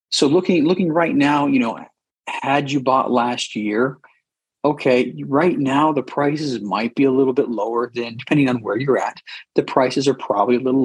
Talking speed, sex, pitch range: 195 wpm, male, 110-130 Hz